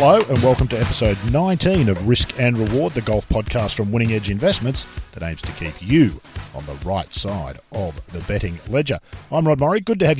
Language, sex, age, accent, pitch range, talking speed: English, male, 50-69, Australian, 95-145 Hz, 210 wpm